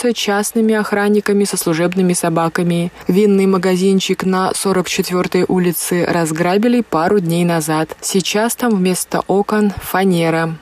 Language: Russian